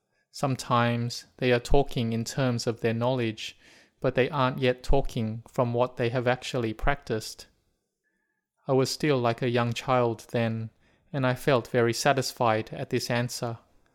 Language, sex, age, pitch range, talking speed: English, male, 20-39, 120-135 Hz, 155 wpm